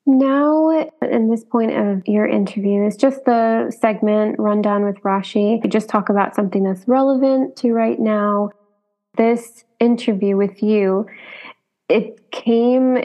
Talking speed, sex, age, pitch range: 140 wpm, female, 20-39, 195-230 Hz